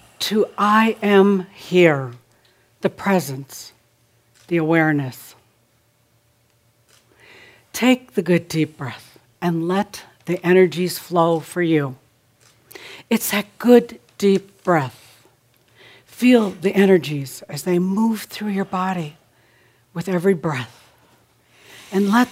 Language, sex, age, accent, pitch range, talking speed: English, female, 60-79, American, 125-190 Hz, 105 wpm